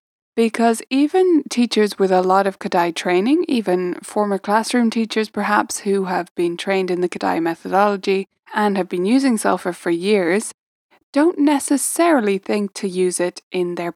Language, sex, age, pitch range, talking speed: English, female, 20-39, 185-240 Hz, 160 wpm